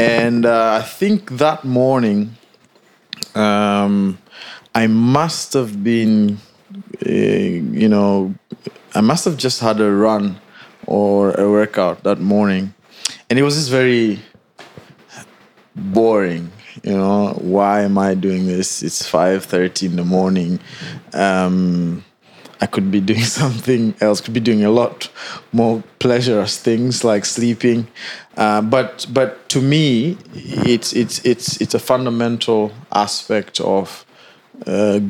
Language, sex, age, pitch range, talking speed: English, male, 20-39, 100-115 Hz, 130 wpm